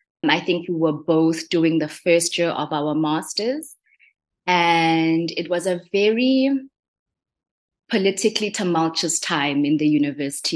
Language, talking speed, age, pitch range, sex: English, 130 wpm, 20-39, 160-195 Hz, female